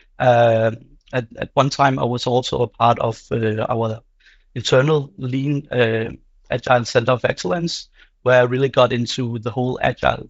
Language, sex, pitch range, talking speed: English, male, 115-130 Hz, 165 wpm